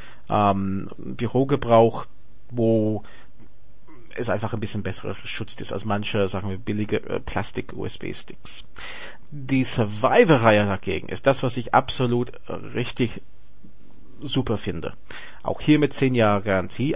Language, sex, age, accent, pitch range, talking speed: German, male, 40-59, Austrian, 110-140 Hz, 125 wpm